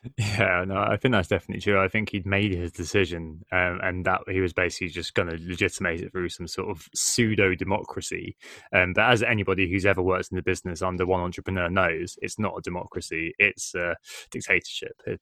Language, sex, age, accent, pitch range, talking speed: English, male, 20-39, British, 90-110 Hz, 205 wpm